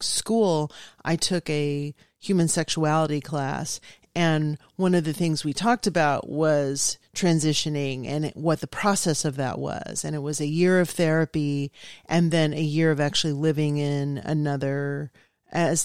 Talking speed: 155 wpm